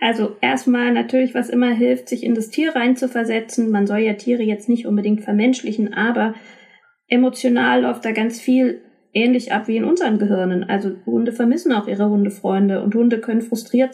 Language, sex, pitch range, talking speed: German, female, 220-260 Hz, 175 wpm